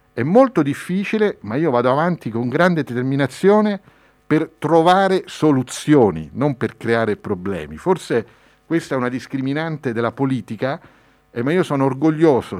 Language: Italian